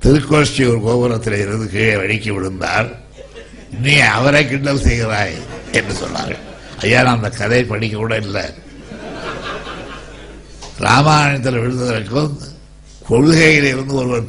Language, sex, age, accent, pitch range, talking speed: Tamil, male, 60-79, native, 110-125 Hz, 95 wpm